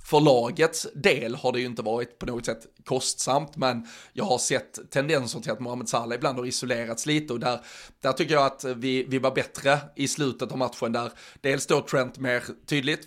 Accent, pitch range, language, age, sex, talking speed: native, 125-145 Hz, Swedish, 30-49, male, 205 wpm